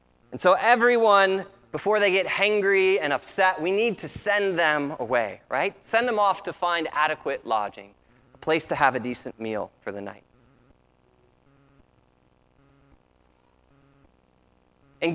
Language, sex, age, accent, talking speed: English, male, 30-49, American, 135 wpm